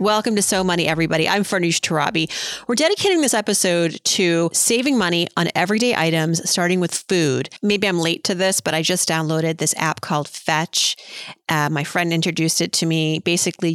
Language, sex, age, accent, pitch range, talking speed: English, female, 30-49, American, 165-205 Hz, 185 wpm